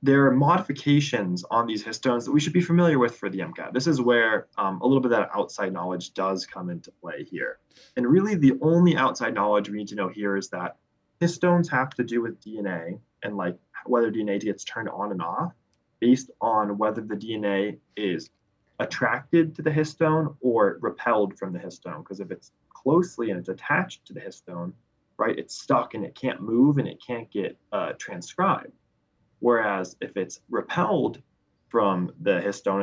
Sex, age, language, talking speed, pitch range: male, 20-39, English, 190 wpm, 100-145 Hz